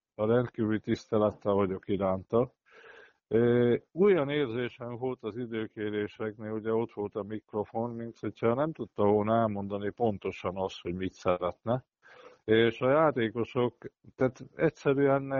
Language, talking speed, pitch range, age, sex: Hungarian, 115 wpm, 105-125 Hz, 50-69, male